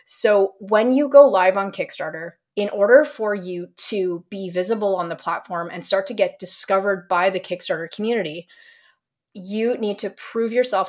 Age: 20-39